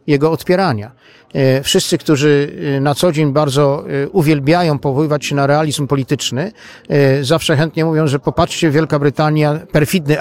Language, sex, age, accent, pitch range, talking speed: Polish, male, 50-69, native, 135-165 Hz, 130 wpm